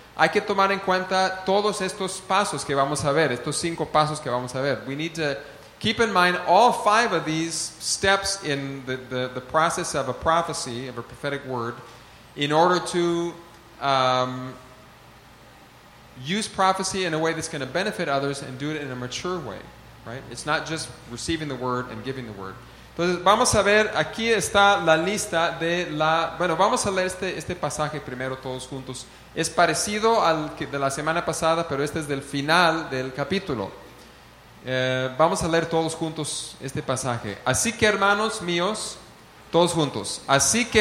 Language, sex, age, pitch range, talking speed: English, male, 30-49, 135-185 Hz, 175 wpm